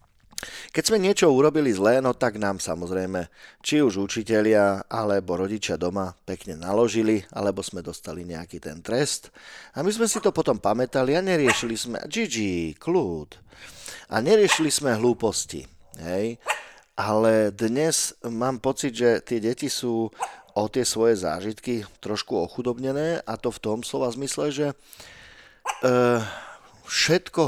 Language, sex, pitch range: Slovak, male, 100-125 Hz